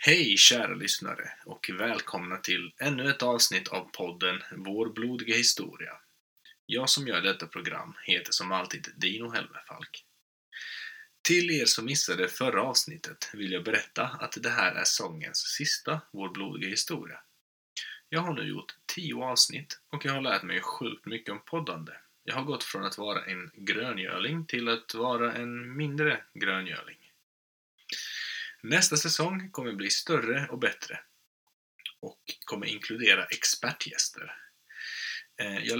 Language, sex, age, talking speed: Swedish, male, 20-39, 140 wpm